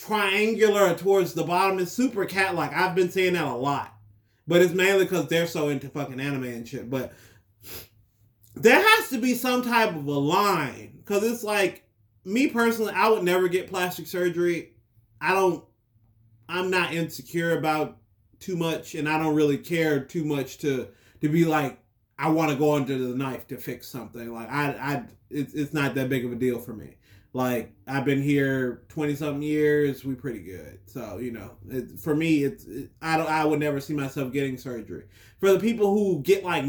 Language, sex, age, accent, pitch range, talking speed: English, male, 30-49, American, 125-165 Hz, 195 wpm